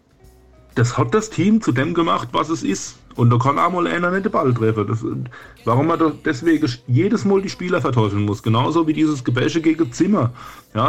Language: German